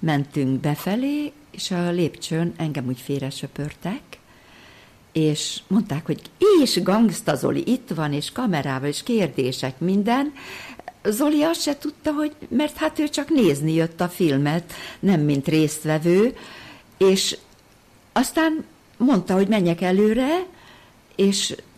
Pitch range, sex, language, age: 150-205 Hz, female, Hungarian, 60-79